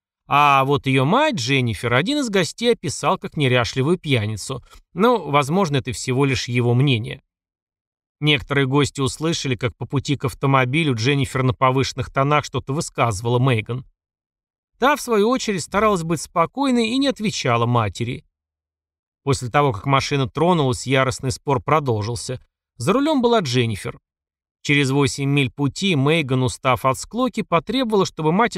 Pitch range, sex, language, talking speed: 125-170 Hz, male, Russian, 145 wpm